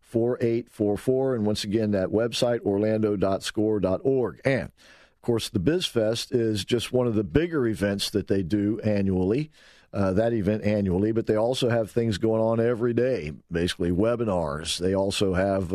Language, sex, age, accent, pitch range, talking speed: English, male, 50-69, American, 100-120 Hz, 170 wpm